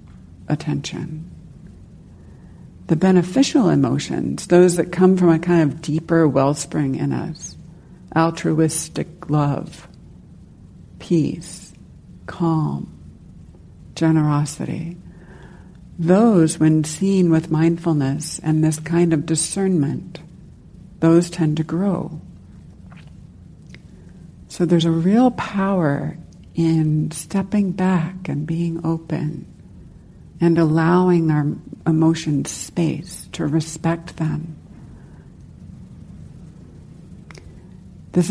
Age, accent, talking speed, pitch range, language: 60-79, American, 85 wpm, 155-175 Hz, English